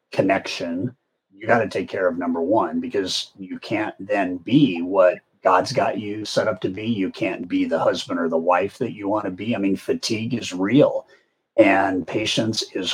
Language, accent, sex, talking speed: English, American, male, 200 wpm